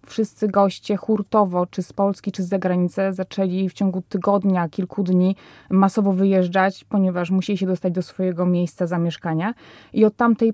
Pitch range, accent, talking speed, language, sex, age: 190-215 Hz, native, 160 wpm, Polish, female, 20-39